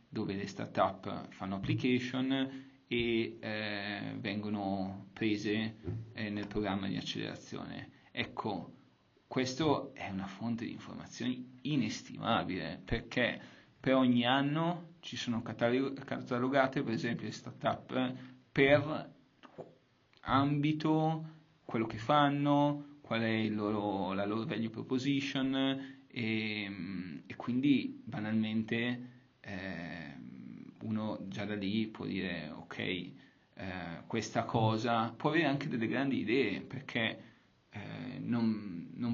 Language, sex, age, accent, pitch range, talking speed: Italian, male, 30-49, native, 105-125 Hz, 105 wpm